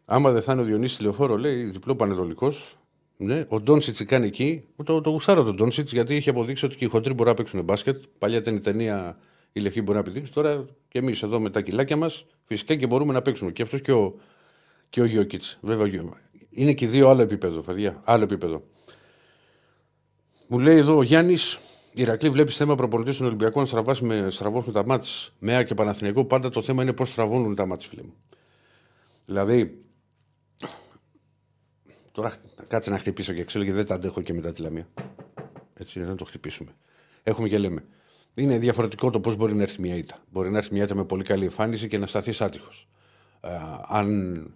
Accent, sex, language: native, male, Greek